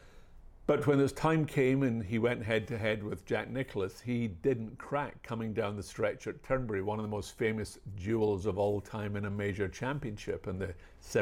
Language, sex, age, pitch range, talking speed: English, male, 50-69, 95-115 Hz, 205 wpm